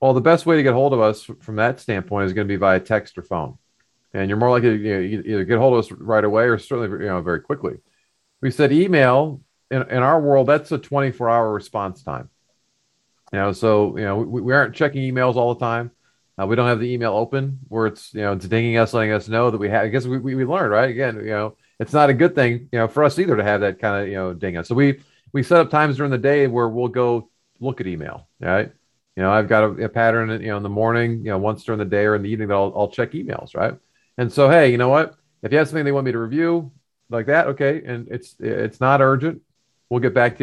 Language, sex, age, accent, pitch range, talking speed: English, male, 40-59, American, 110-140 Hz, 280 wpm